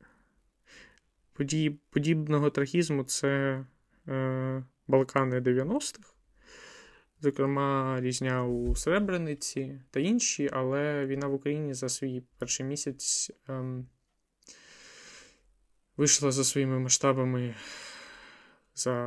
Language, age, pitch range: Ukrainian, 20-39, 130-150 Hz